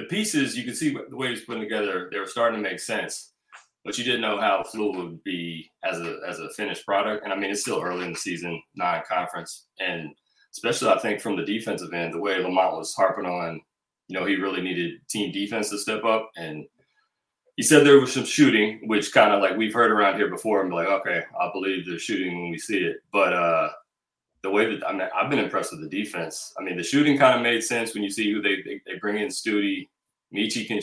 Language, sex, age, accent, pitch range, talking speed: English, male, 30-49, American, 90-115 Hz, 240 wpm